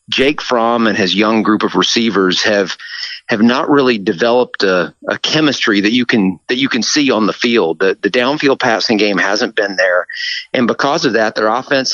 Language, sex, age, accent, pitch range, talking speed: English, male, 40-59, American, 115-145 Hz, 200 wpm